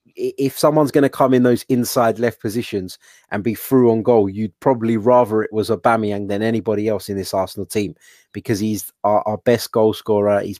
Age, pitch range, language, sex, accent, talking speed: 30-49, 105-120 Hz, English, male, British, 205 wpm